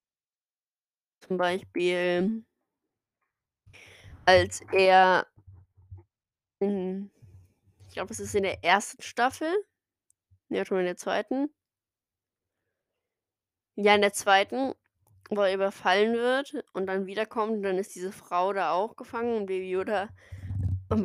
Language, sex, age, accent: German, female, 20-39, German